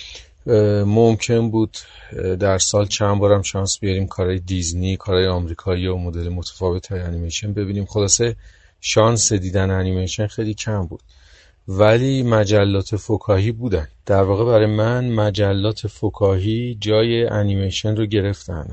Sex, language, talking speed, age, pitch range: male, Persian, 120 wpm, 40-59, 95-110 Hz